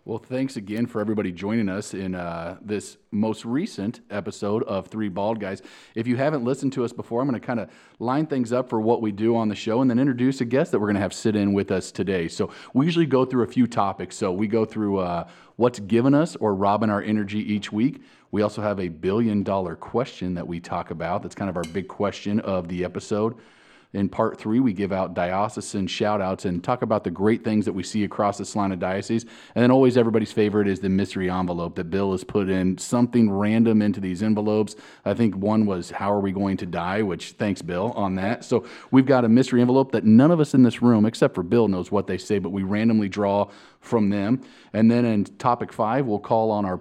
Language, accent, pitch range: English, American, 95-115 Hz